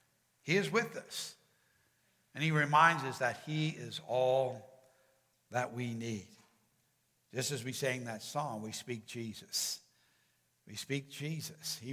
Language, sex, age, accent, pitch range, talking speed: English, male, 60-79, American, 130-170 Hz, 140 wpm